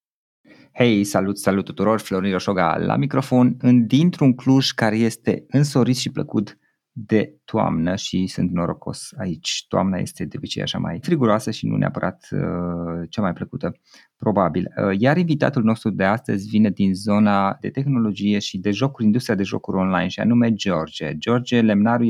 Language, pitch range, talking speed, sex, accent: Romanian, 95-120 Hz, 155 wpm, male, native